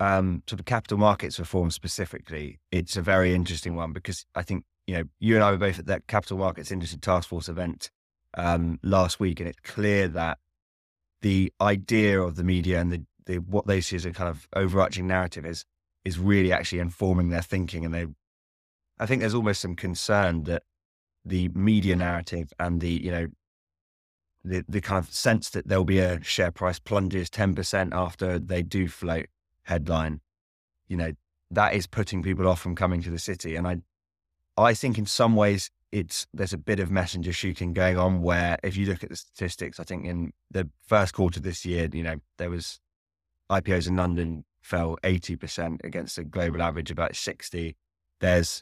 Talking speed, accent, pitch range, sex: 190 wpm, British, 85-95 Hz, male